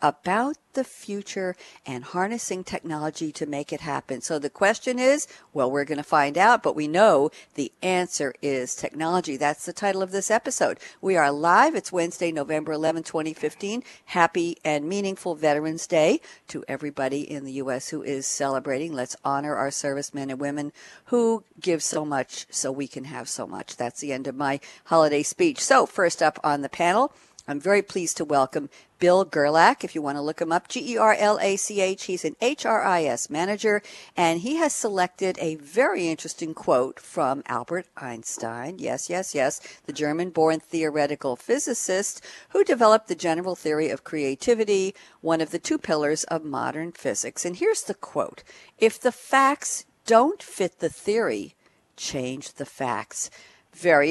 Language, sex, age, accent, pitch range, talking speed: English, female, 50-69, American, 145-200 Hz, 165 wpm